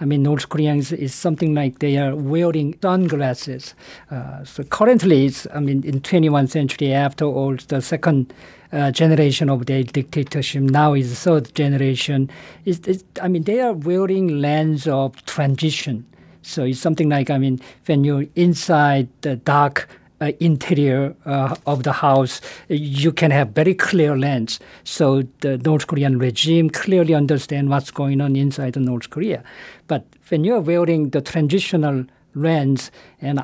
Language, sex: English, male